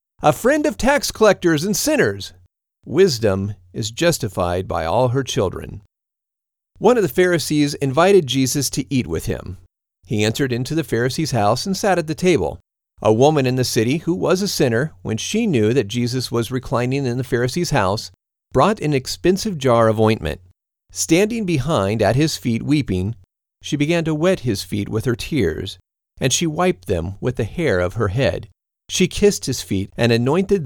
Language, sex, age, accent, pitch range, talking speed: English, male, 40-59, American, 105-155 Hz, 180 wpm